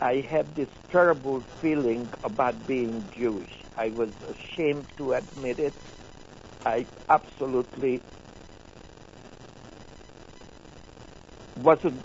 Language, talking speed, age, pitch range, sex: English, 85 wpm, 60-79, 125-160 Hz, male